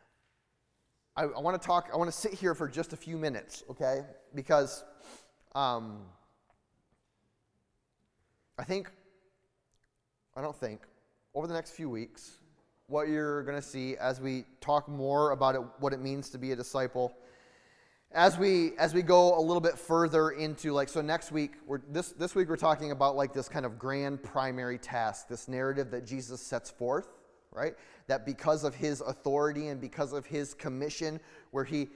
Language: English